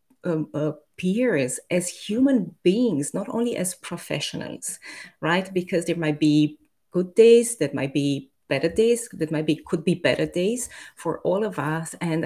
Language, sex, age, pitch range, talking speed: English, female, 30-49, 150-185 Hz, 165 wpm